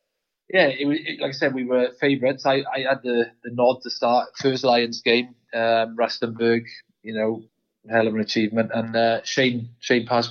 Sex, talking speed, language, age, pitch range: male, 200 wpm, English, 20-39, 115-135 Hz